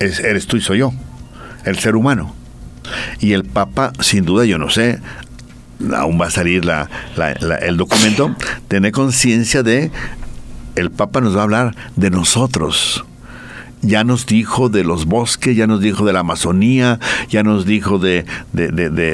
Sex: male